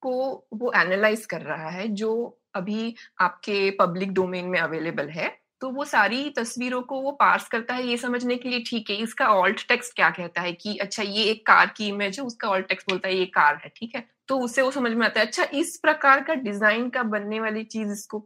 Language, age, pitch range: Hindi, 20-39, 210-300 Hz